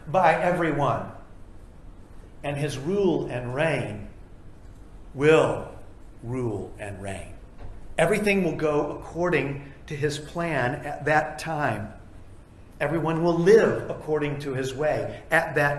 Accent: American